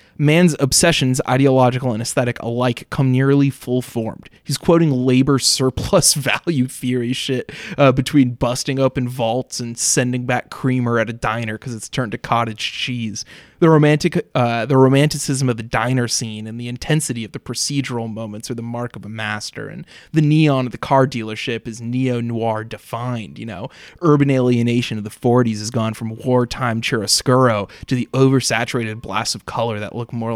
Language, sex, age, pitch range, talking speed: English, male, 20-39, 115-140 Hz, 170 wpm